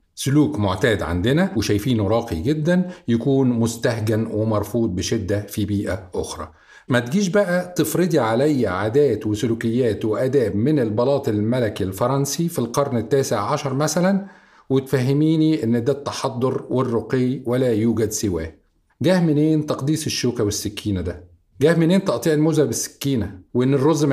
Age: 40-59